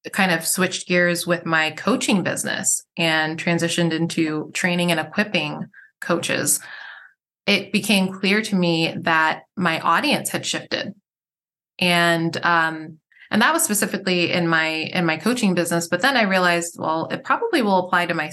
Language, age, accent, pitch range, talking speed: English, 20-39, American, 165-200 Hz, 155 wpm